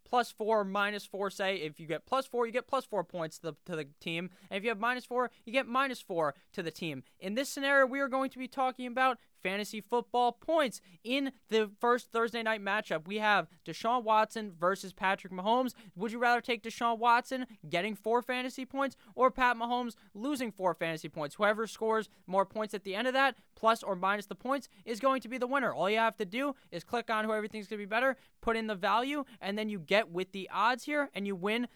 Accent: American